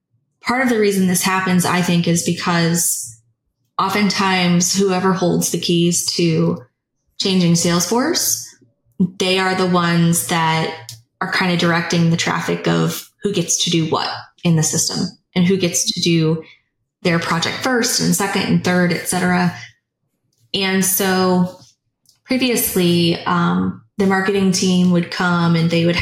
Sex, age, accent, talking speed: female, 20-39, American, 150 wpm